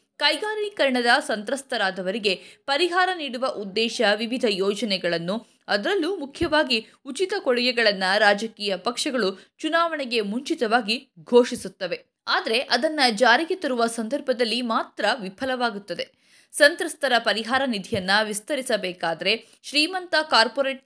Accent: native